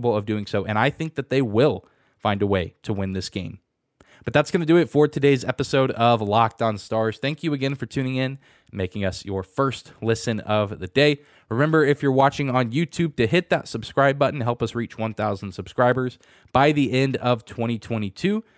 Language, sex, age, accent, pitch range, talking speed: English, male, 20-39, American, 110-140 Hz, 205 wpm